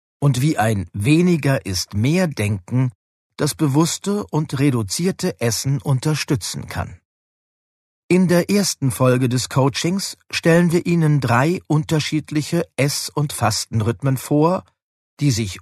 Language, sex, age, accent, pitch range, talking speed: German, male, 40-59, German, 105-155 Hz, 110 wpm